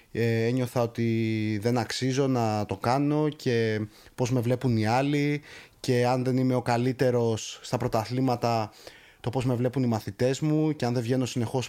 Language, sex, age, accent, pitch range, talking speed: Greek, male, 20-39, native, 120-155 Hz, 175 wpm